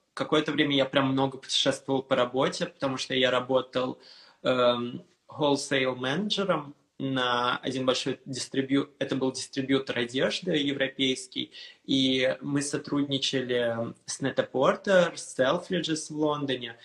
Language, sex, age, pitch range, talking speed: Russian, male, 20-39, 120-140 Hz, 120 wpm